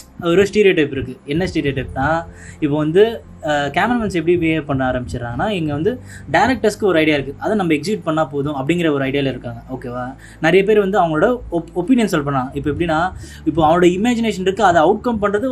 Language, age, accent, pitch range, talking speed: Tamil, 20-39, native, 145-205 Hz, 180 wpm